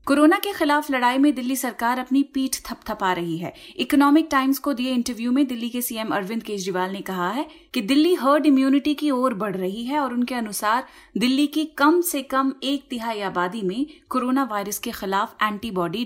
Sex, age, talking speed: female, 30-49, 195 wpm